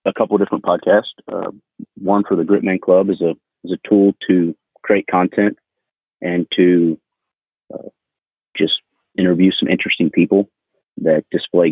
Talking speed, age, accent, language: 150 wpm, 30-49, American, English